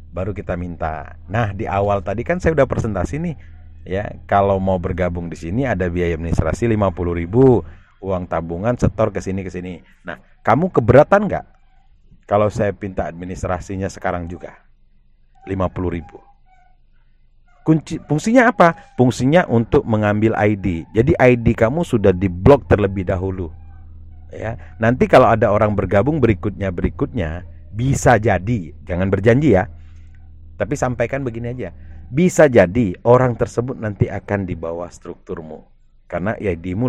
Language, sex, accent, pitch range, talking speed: Indonesian, male, native, 85-125 Hz, 135 wpm